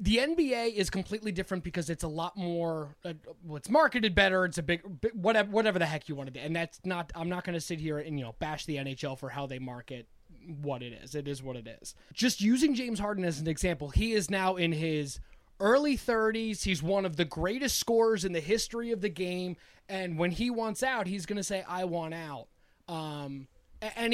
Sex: male